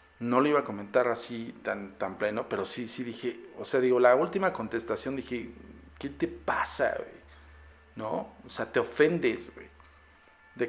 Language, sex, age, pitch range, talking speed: Spanish, male, 50-69, 110-155 Hz, 170 wpm